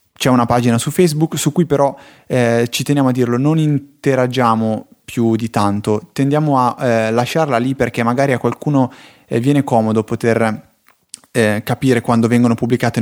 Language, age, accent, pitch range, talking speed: Italian, 20-39, native, 115-135 Hz, 160 wpm